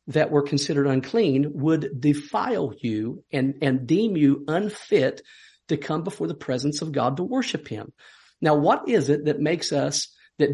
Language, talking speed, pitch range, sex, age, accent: English, 170 wpm, 135-165 Hz, male, 50-69, American